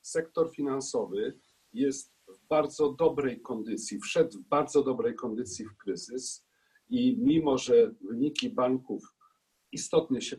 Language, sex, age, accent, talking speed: Polish, male, 50-69, native, 120 wpm